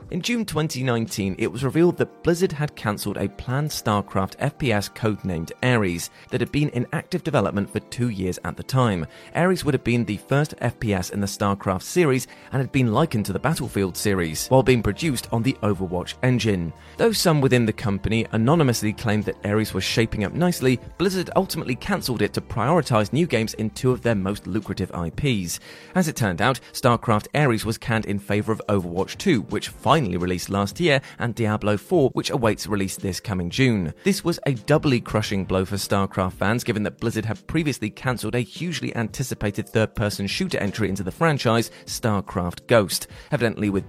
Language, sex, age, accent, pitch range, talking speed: English, male, 30-49, British, 100-130 Hz, 185 wpm